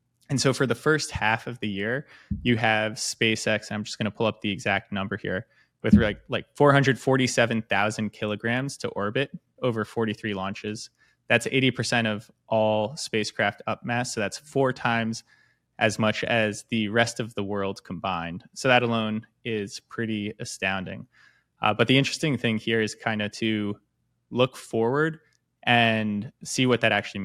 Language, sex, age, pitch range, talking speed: English, male, 20-39, 105-125 Hz, 165 wpm